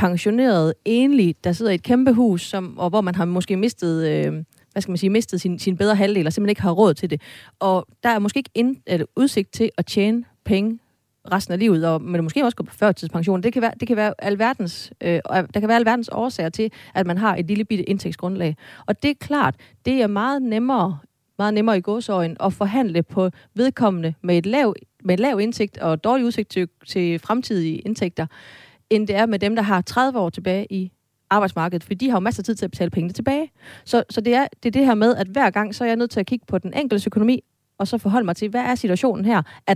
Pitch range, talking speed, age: 175-225 Hz, 245 wpm, 30-49